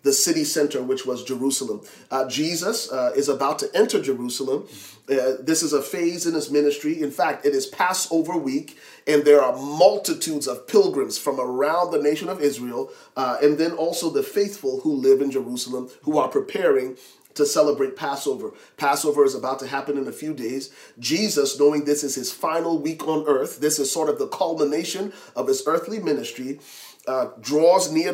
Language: English